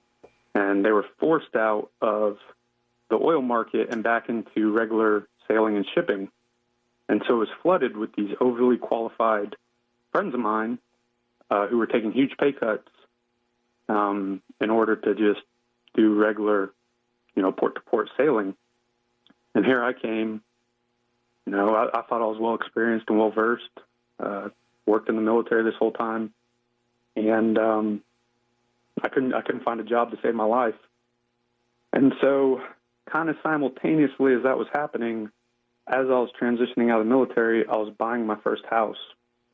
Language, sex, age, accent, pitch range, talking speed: English, male, 30-49, American, 110-120 Hz, 160 wpm